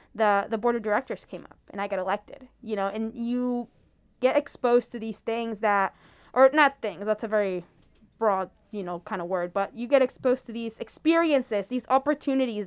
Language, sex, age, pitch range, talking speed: English, female, 10-29, 210-275 Hz, 200 wpm